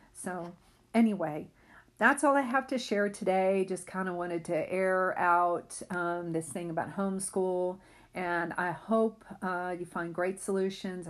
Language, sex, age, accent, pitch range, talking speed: English, female, 40-59, American, 175-205 Hz, 155 wpm